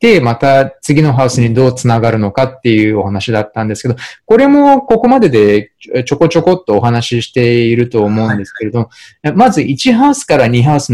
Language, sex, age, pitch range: Japanese, male, 20-39, 110-165 Hz